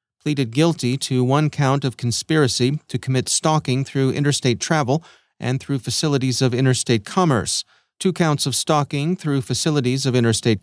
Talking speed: 150 wpm